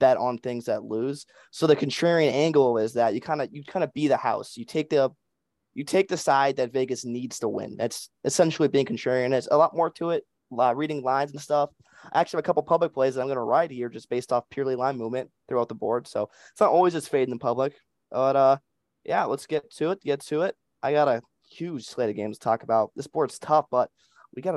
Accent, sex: American, male